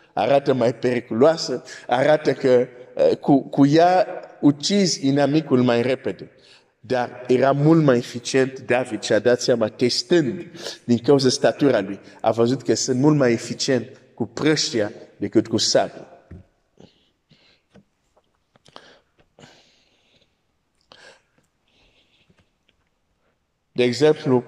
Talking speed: 105 wpm